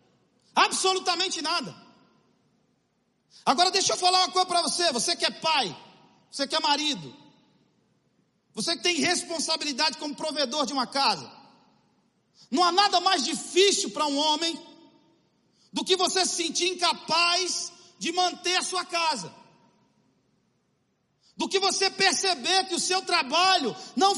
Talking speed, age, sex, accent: 135 wpm, 40-59, male, Brazilian